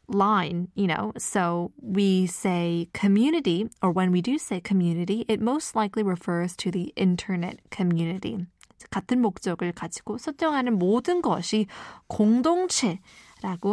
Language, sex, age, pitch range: Korean, female, 20-39, 185-240 Hz